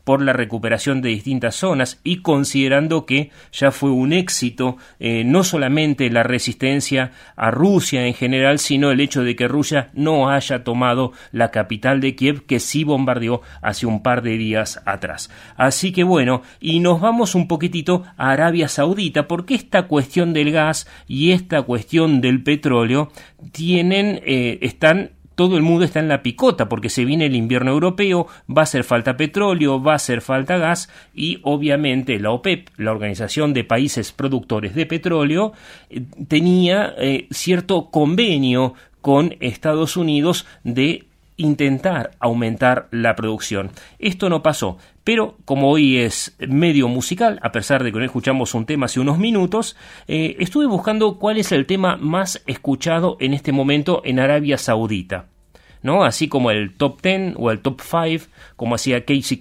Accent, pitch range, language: Argentinian, 125-165 Hz, Spanish